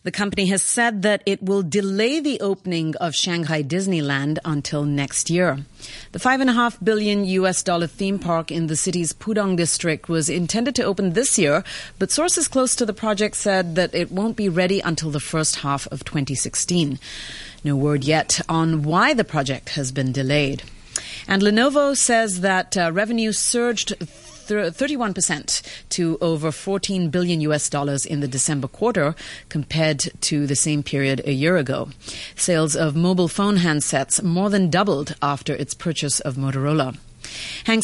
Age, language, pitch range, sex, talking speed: 30-49, English, 150-200 Hz, female, 160 wpm